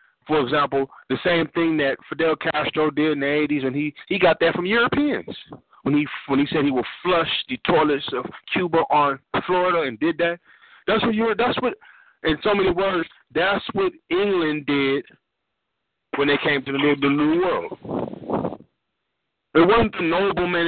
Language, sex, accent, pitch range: Japanese, male, American, 150-230 Hz